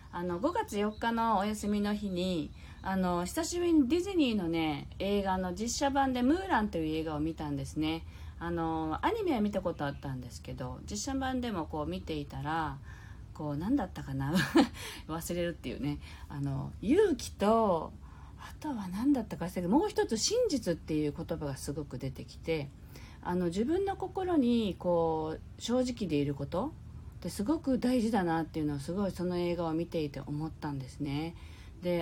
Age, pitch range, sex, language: 40-59, 160-255 Hz, female, Japanese